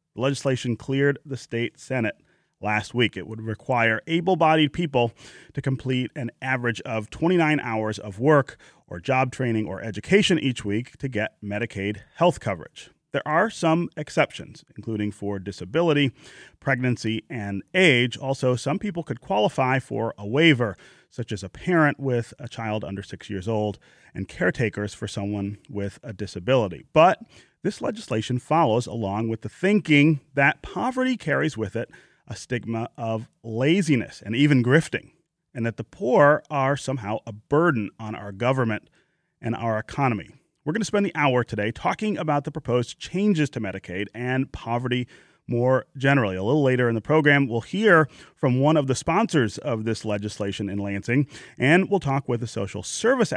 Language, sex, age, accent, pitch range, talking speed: English, male, 30-49, American, 110-145 Hz, 165 wpm